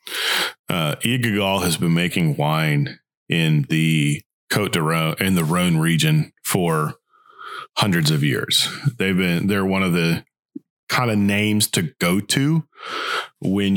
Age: 30-49